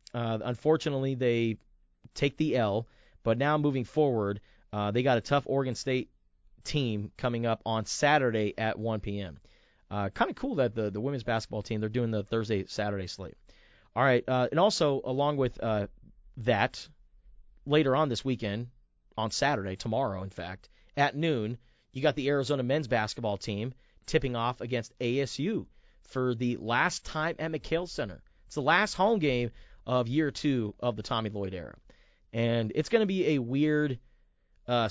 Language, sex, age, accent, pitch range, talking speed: English, male, 30-49, American, 110-140 Hz, 170 wpm